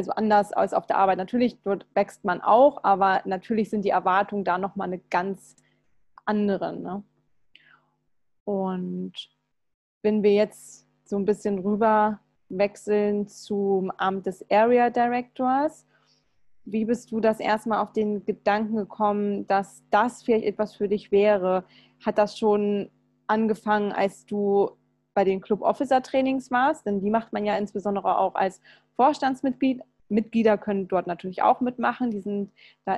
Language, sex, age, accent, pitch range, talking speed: German, female, 20-39, German, 200-230 Hz, 150 wpm